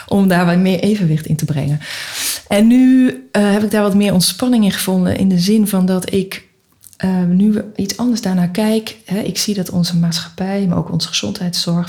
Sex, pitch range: female, 170-200 Hz